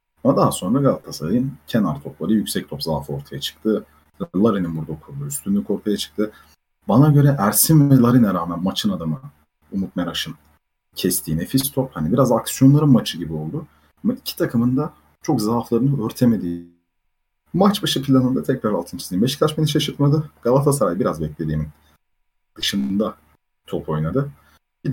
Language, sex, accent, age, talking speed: Turkish, male, native, 40-59, 140 wpm